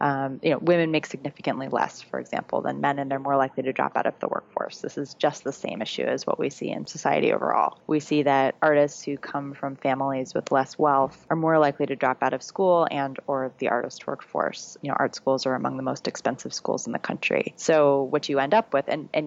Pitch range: 135-150 Hz